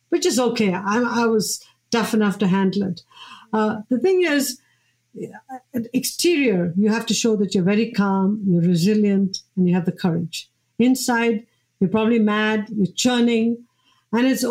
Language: English